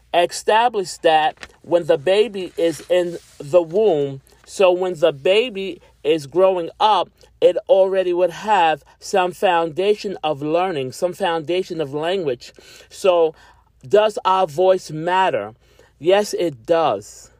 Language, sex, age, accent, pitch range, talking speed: English, male, 40-59, American, 165-215 Hz, 125 wpm